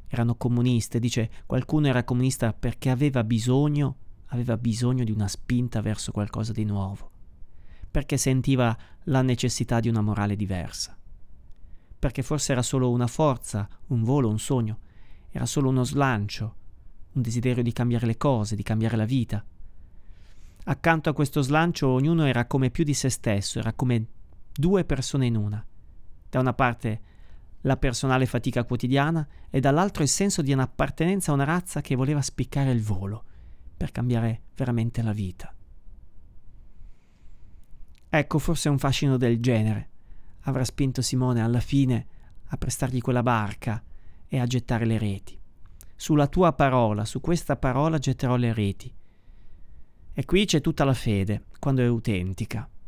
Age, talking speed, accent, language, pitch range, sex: 30-49, 150 wpm, native, Italian, 105-135 Hz, male